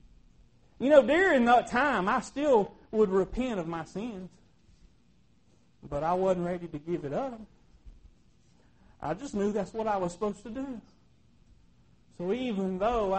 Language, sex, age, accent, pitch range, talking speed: English, male, 40-59, American, 150-215 Hz, 150 wpm